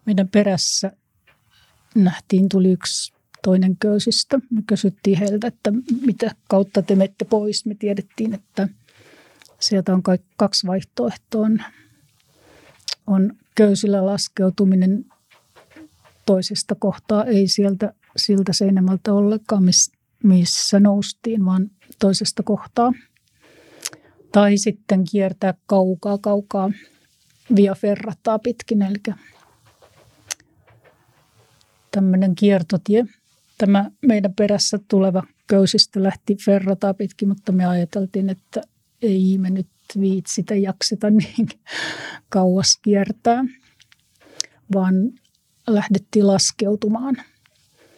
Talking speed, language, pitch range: 90 wpm, Finnish, 190-215 Hz